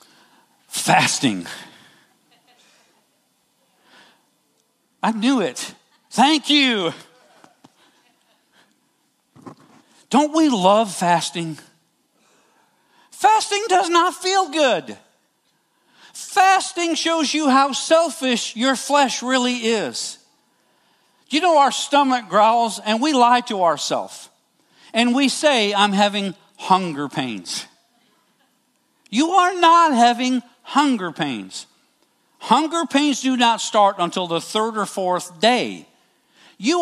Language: English